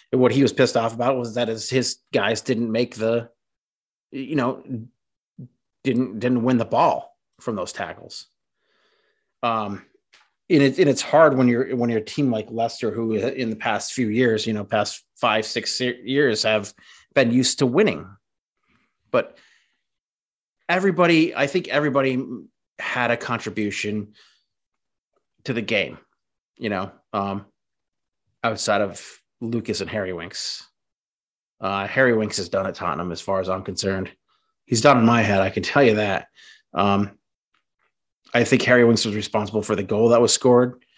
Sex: male